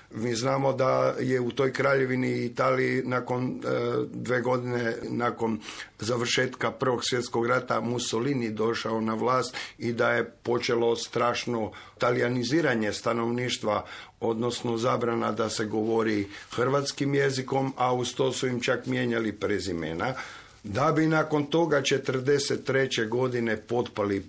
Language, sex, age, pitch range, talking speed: Croatian, male, 50-69, 110-130 Hz, 125 wpm